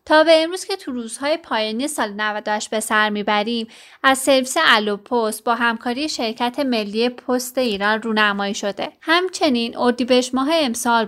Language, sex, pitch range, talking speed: Persian, female, 215-265 Hz, 145 wpm